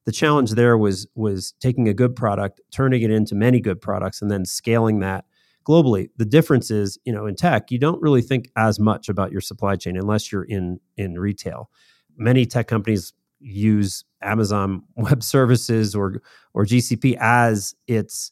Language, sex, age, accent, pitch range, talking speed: English, male, 30-49, American, 100-120 Hz, 175 wpm